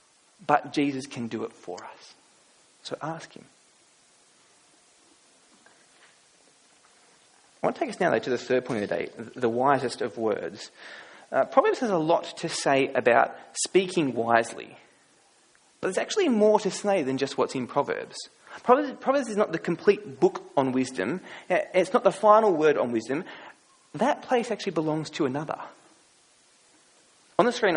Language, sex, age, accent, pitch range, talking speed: English, male, 20-39, Australian, 135-205 Hz, 160 wpm